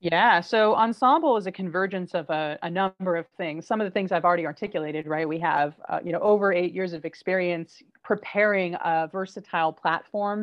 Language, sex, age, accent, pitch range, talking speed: English, female, 30-49, American, 160-195 Hz, 195 wpm